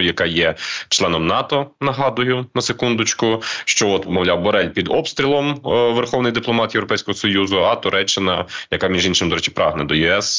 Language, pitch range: Ukrainian, 90-110 Hz